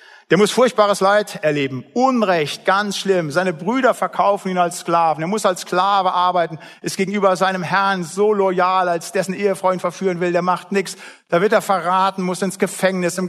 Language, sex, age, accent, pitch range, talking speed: German, male, 50-69, German, 160-205 Hz, 185 wpm